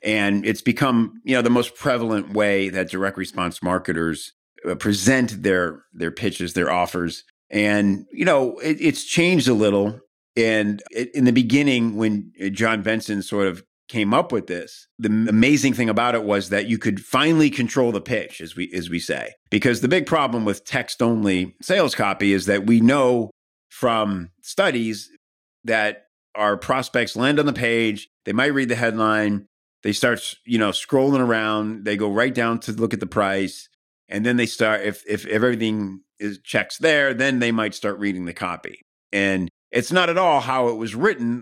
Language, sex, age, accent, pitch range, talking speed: English, male, 50-69, American, 100-125 Hz, 185 wpm